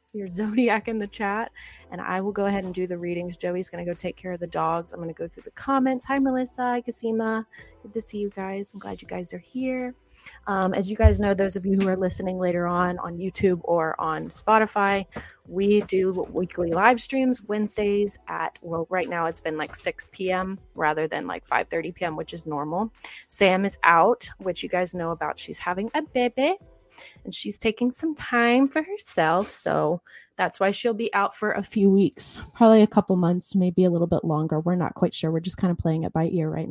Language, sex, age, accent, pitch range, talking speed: English, female, 20-39, American, 170-235 Hz, 220 wpm